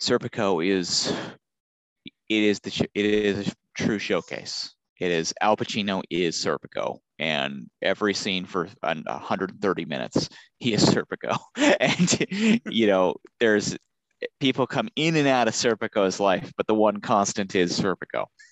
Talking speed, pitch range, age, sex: 140 wpm, 95-120 Hz, 30-49, male